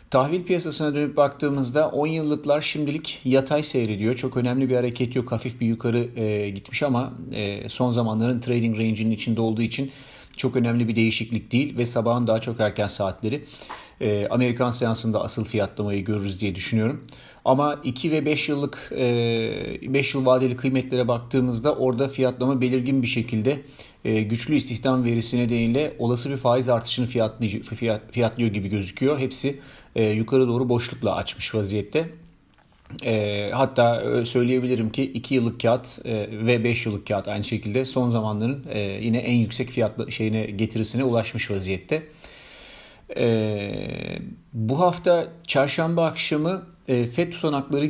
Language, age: Turkish, 40-59